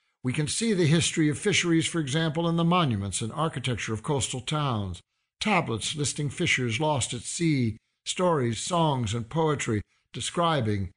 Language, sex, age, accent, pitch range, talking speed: English, male, 60-79, American, 110-155 Hz, 155 wpm